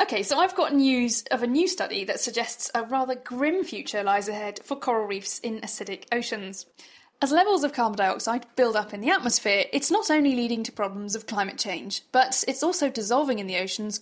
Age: 10-29